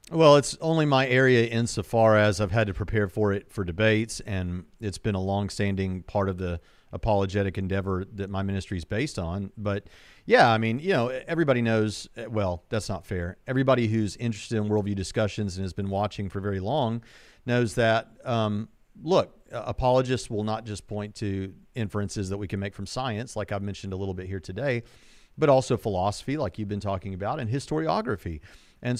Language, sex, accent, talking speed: English, male, American, 190 wpm